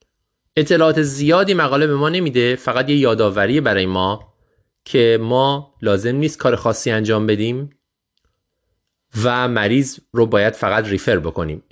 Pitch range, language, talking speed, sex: 100-130 Hz, Persian, 135 wpm, male